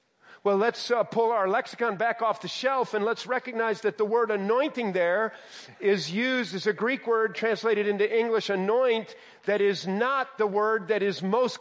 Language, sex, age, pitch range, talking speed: English, male, 40-59, 195-255 Hz, 185 wpm